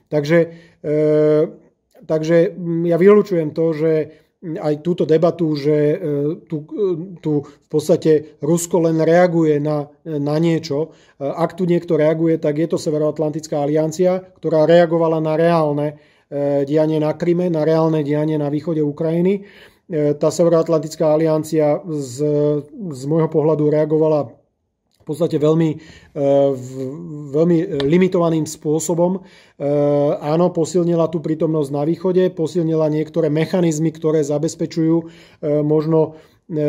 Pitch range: 150-165 Hz